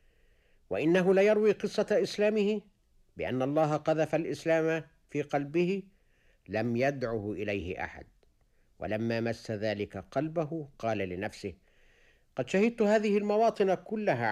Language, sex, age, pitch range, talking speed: Arabic, male, 60-79, 100-160 Hz, 105 wpm